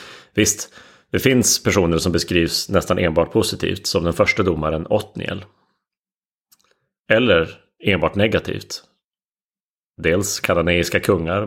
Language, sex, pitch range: Swedish, male, 90-110 Hz